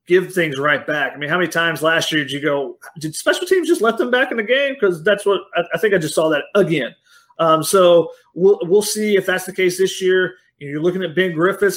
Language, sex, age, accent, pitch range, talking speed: English, male, 30-49, American, 160-185 Hz, 270 wpm